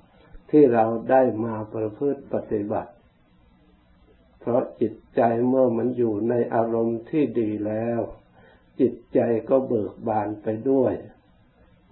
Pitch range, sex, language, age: 110-125 Hz, male, Thai, 60-79